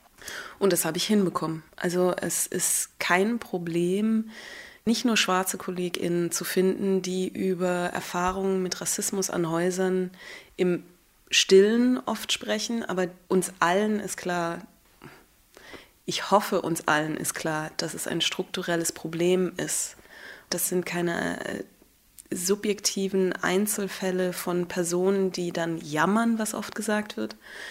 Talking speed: 125 wpm